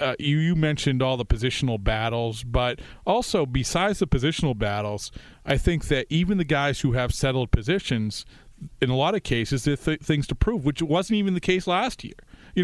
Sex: male